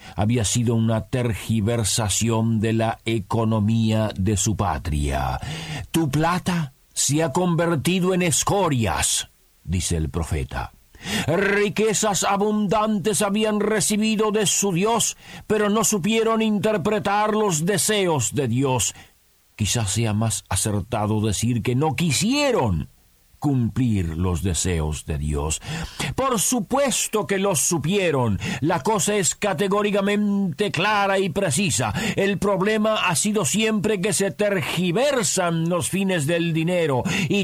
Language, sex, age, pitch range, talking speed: Spanish, male, 50-69, 125-205 Hz, 115 wpm